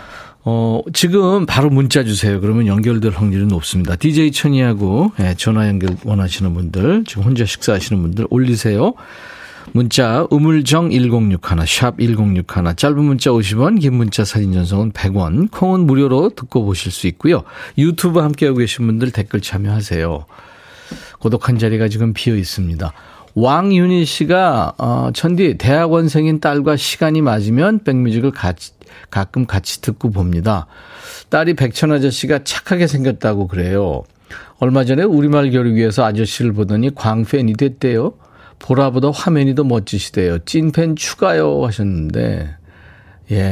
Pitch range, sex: 100-140 Hz, male